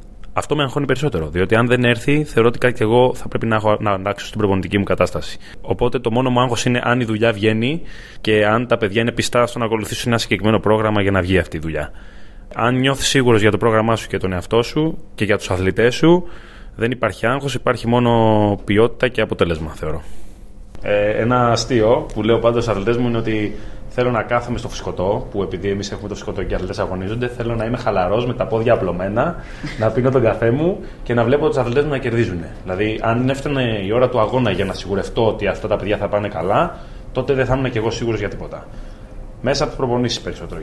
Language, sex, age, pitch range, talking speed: Greek, male, 20-39, 105-125 Hz, 225 wpm